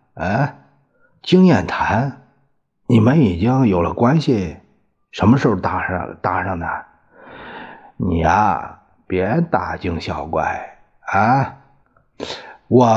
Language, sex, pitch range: Chinese, male, 90-125 Hz